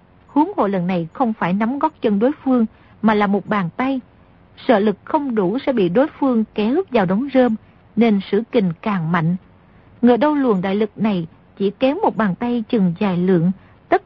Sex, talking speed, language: female, 205 wpm, Vietnamese